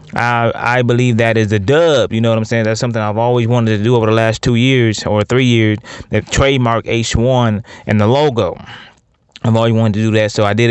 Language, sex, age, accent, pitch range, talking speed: English, male, 20-39, American, 110-130 Hz, 240 wpm